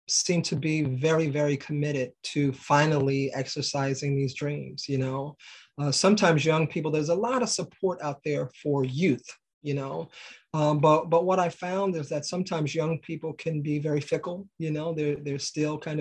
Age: 30-49